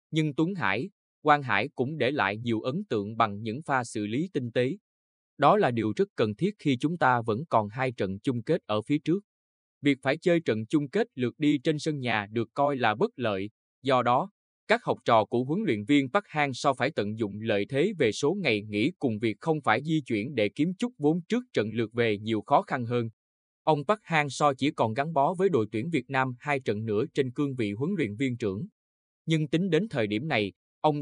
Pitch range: 110-150 Hz